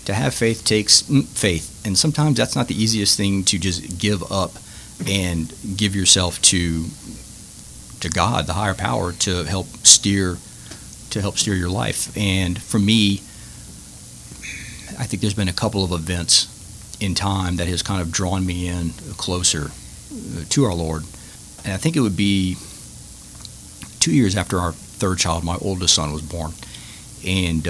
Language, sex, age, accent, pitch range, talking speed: English, male, 40-59, American, 85-105 Hz, 160 wpm